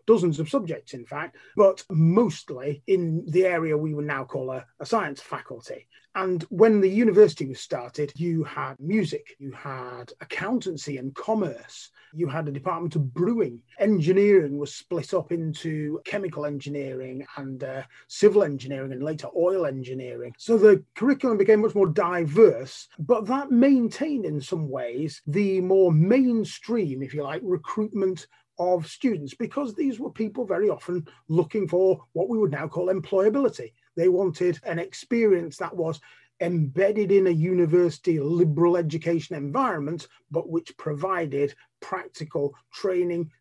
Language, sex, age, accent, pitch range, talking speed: English, male, 30-49, British, 150-200 Hz, 150 wpm